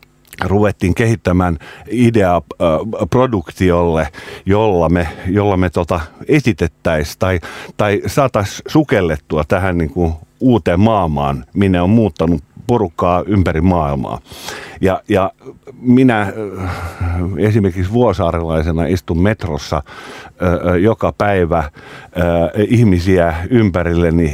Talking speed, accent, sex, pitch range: 95 wpm, native, male, 85-110 Hz